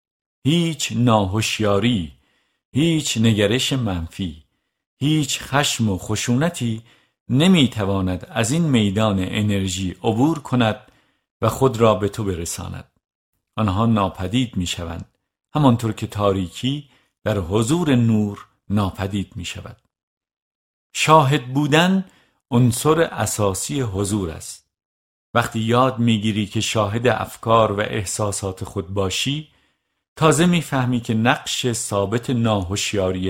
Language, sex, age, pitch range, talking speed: Persian, male, 50-69, 100-125 Hz, 105 wpm